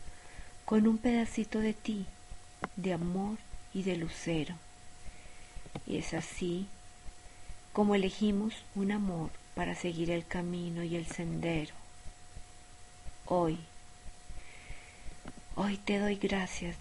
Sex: female